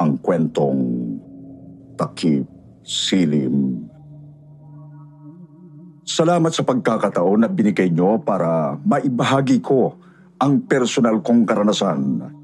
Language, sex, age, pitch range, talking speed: Filipino, male, 50-69, 140-185 Hz, 80 wpm